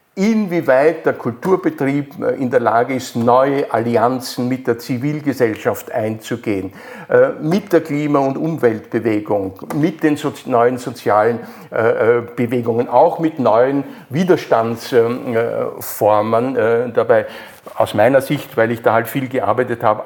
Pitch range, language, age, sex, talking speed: 120-160 Hz, German, 50-69, male, 115 wpm